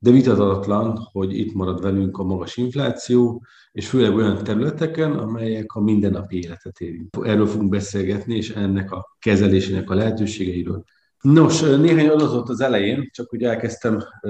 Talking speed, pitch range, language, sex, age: 145 wpm, 95-120 Hz, Hungarian, male, 50-69